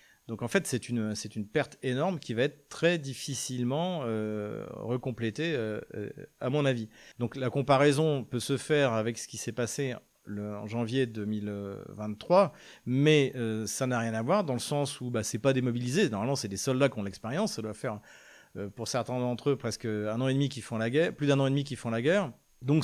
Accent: French